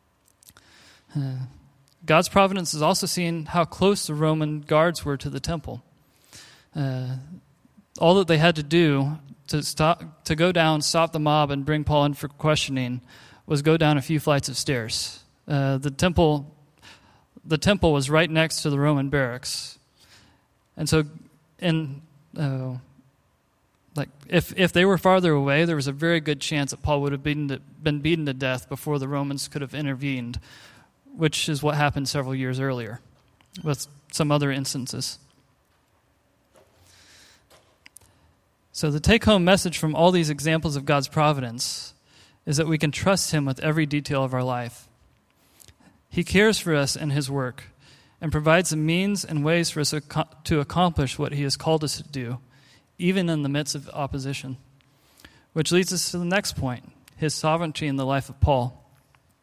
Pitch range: 135-160 Hz